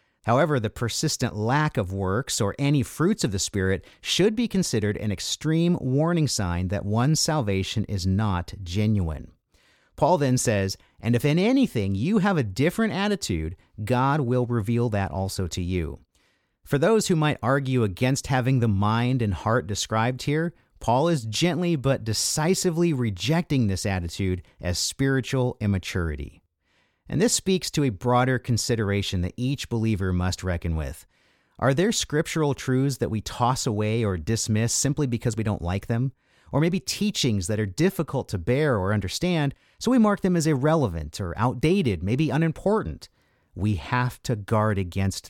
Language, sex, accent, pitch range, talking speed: English, male, American, 100-150 Hz, 160 wpm